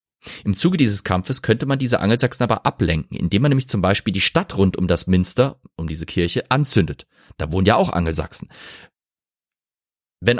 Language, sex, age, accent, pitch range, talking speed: German, male, 30-49, German, 90-115 Hz, 180 wpm